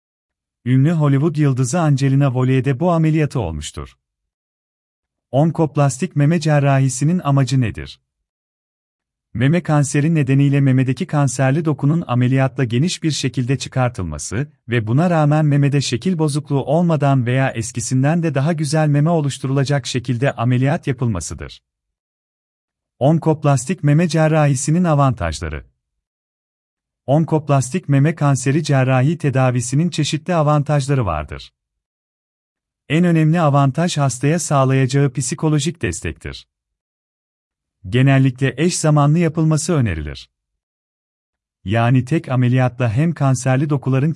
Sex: male